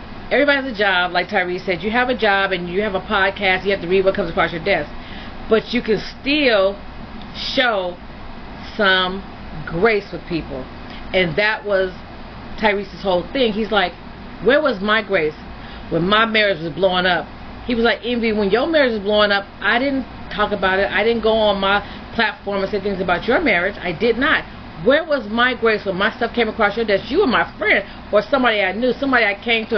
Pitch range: 195-240 Hz